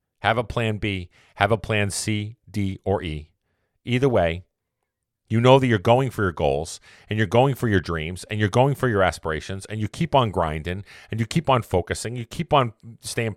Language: English